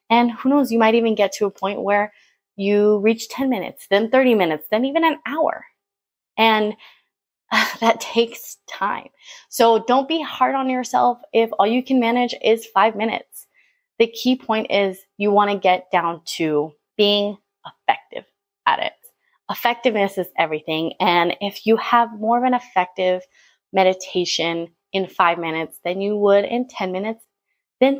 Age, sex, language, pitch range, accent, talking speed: 20-39, female, English, 175-240 Hz, American, 165 wpm